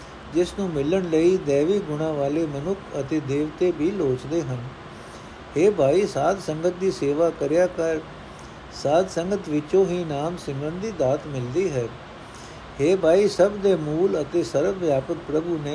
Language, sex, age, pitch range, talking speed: Punjabi, male, 60-79, 150-180 Hz, 155 wpm